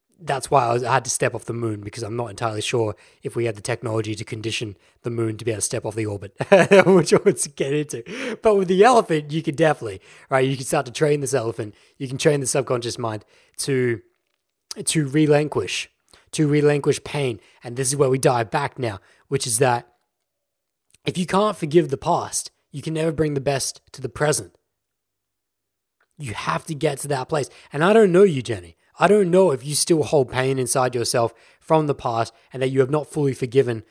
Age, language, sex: 20-39, English, male